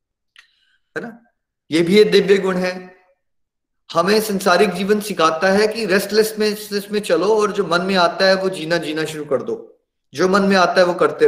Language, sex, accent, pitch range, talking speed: Hindi, male, native, 155-210 Hz, 195 wpm